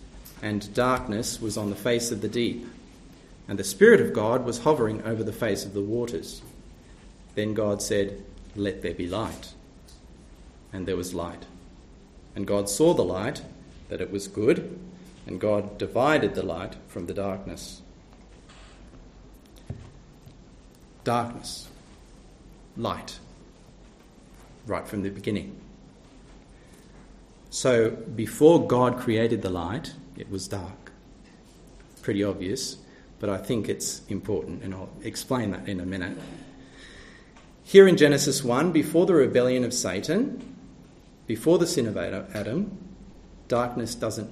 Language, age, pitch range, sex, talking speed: English, 40-59, 95-120 Hz, male, 130 wpm